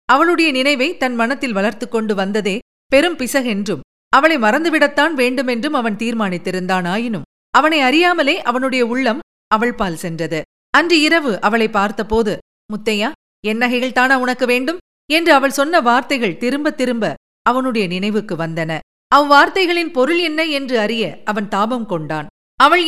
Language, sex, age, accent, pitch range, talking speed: Tamil, female, 40-59, native, 210-280 Hz, 120 wpm